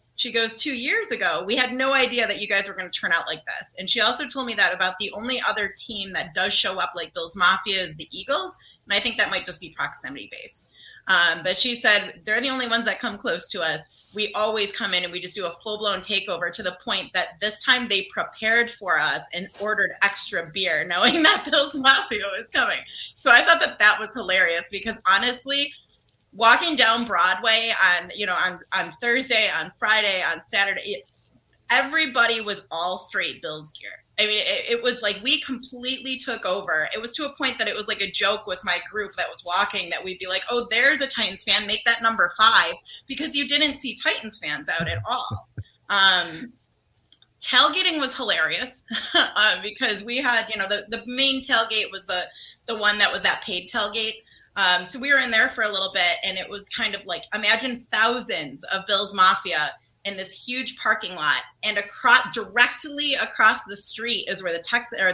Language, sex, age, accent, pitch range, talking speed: English, female, 30-49, American, 195-255 Hz, 210 wpm